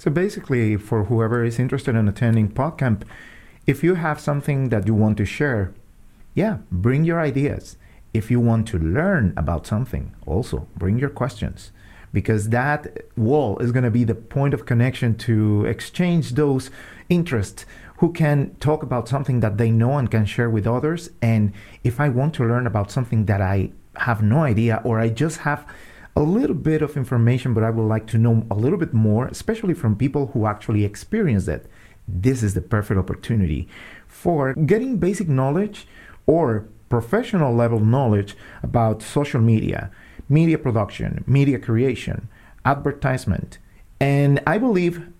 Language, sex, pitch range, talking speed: English, male, 110-140 Hz, 165 wpm